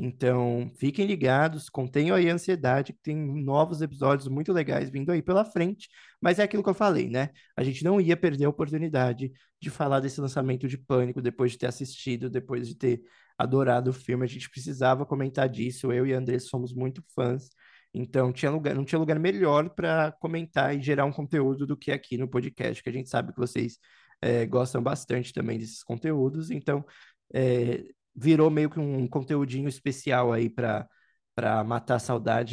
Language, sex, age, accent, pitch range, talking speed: Portuguese, male, 20-39, Brazilian, 125-160 Hz, 185 wpm